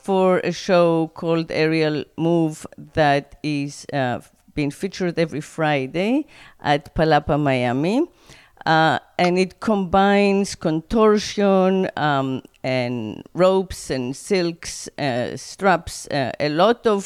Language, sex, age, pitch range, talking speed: English, female, 40-59, 150-190 Hz, 115 wpm